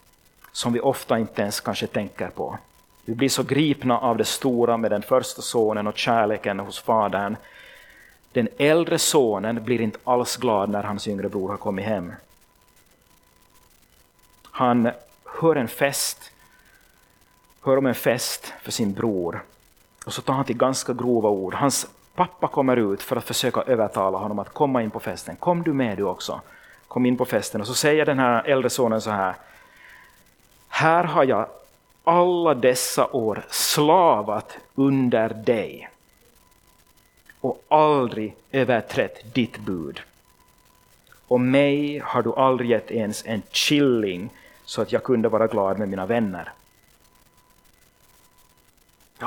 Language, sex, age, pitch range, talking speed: Swedish, male, 30-49, 105-140 Hz, 145 wpm